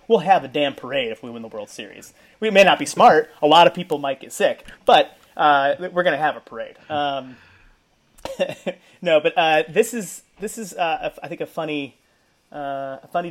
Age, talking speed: 30-49, 210 wpm